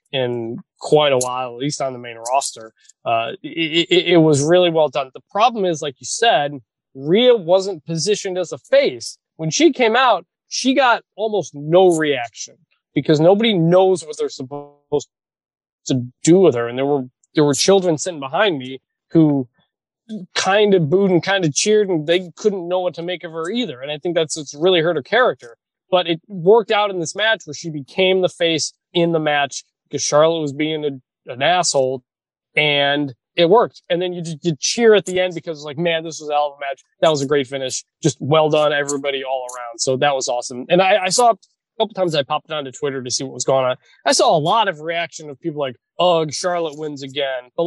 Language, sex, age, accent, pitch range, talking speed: English, male, 20-39, American, 145-185 Hz, 220 wpm